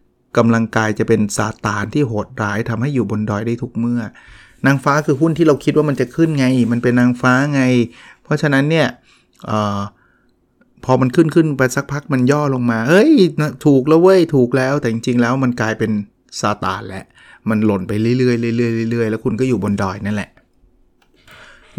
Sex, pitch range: male, 110-140 Hz